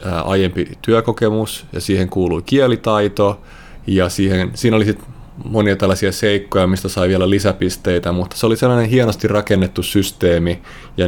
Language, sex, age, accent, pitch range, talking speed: Finnish, male, 30-49, native, 90-110 Hz, 140 wpm